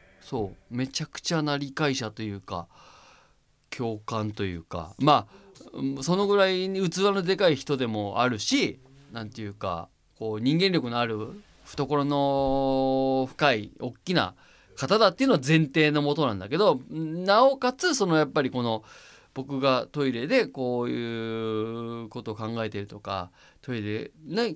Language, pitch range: Japanese, 110-160 Hz